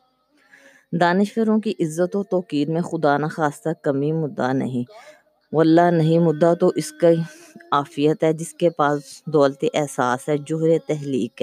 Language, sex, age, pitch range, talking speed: Urdu, female, 20-39, 145-175 Hz, 140 wpm